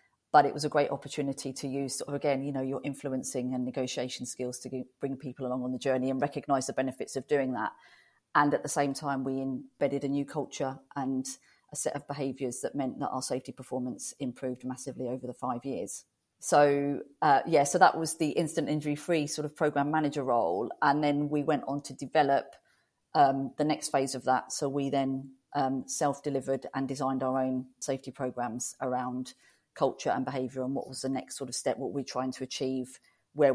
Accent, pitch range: British, 130-145 Hz